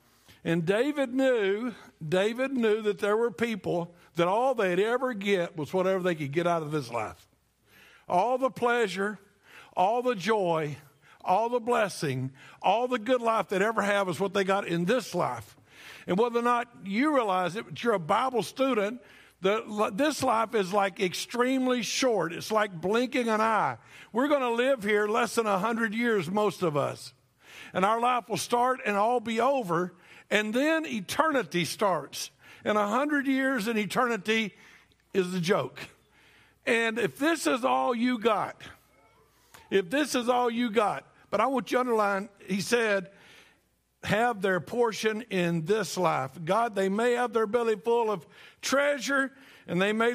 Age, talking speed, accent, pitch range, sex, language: 60-79, 170 wpm, American, 185-245 Hz, male, English